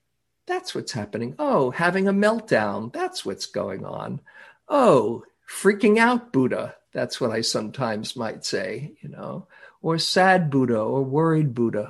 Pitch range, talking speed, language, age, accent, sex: 120-160 Hz, 145 wpm, English, 50-69, American, male